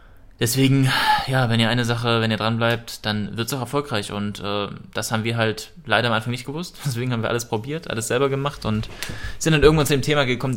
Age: 20-39